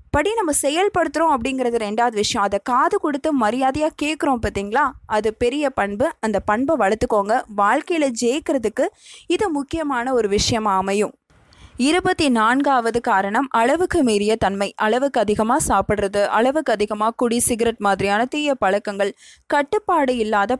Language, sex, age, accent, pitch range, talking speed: Tamil, female, 20-39, native, 210-280 Hz, 120 wpm